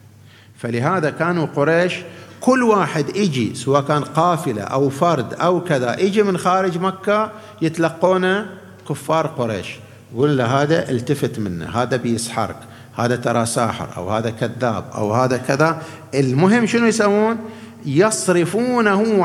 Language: Arabic